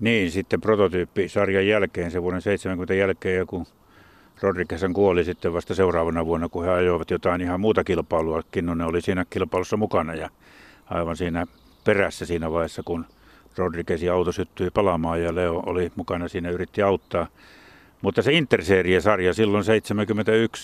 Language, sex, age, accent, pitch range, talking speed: Finnish, male, 60-79, native, 90-115 Hz, 150 wpm